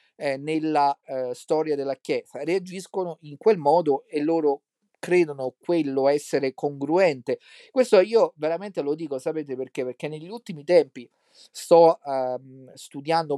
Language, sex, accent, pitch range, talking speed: Italian, male, native, 140-180 Hz, 130 wpm